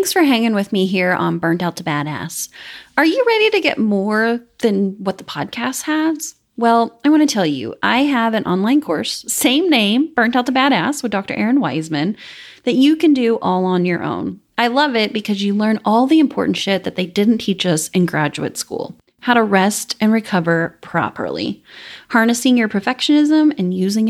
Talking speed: 200 wpm